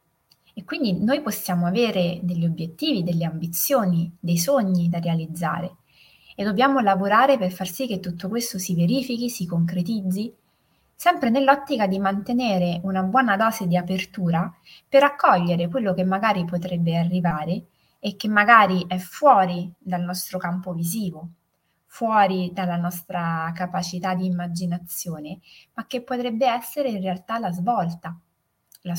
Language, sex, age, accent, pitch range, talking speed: Italian, female, 20-39, native, 175-210 Hz, 135 wpm